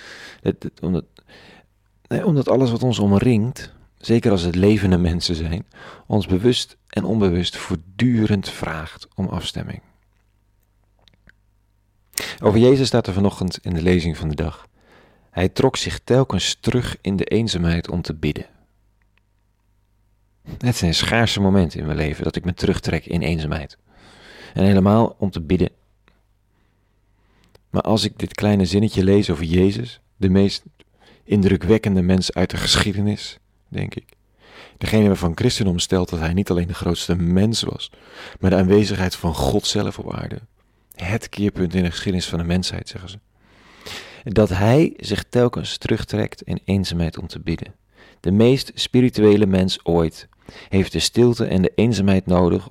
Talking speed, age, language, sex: 150 wpm, 40-59, Dutch, male